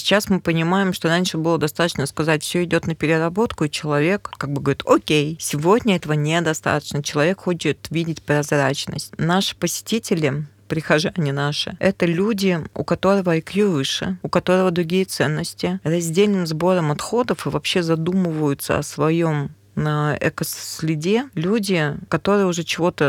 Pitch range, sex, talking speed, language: 150-180 Hz, female, 140 wpm, Russian